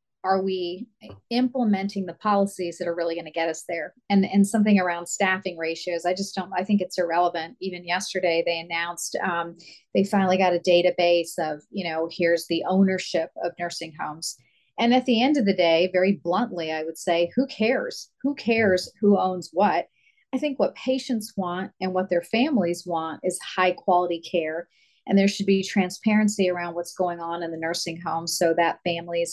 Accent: American